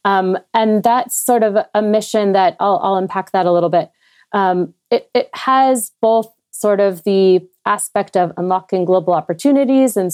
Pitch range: 175-205 Hz